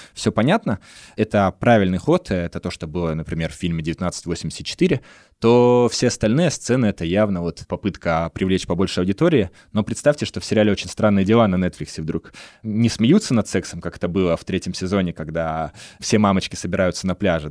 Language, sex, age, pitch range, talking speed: Russian, male, 20-39, 85-105 Hz, 175 wpm